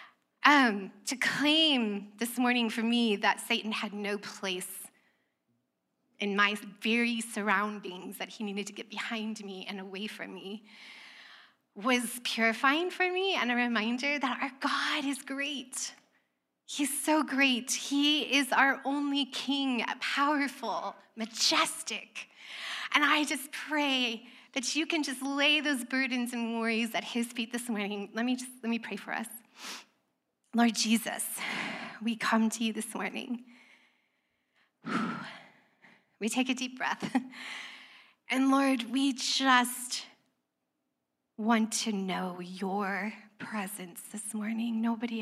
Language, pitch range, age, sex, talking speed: English, 210-265 Hz, 20-39, female, 135 wpm